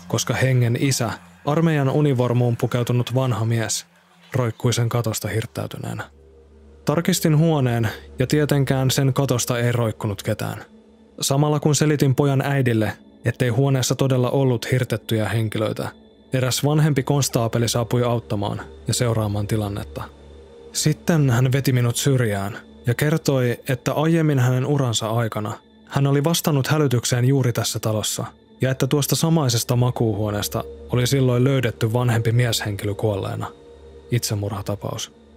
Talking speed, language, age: 120 wpm, Finnish, 20-39